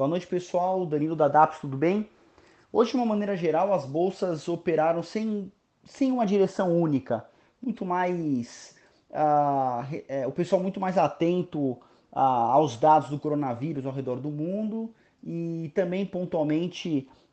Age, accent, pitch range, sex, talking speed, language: 30-49, Brazilian, 140-180 Hz, male, 145 wpm, Portuguese